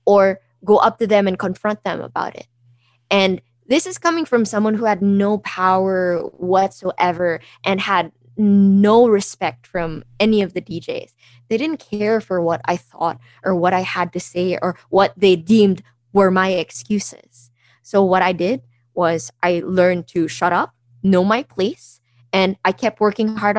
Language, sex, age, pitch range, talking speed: English, female, 20-39, 145-210 Hz, 175 wpm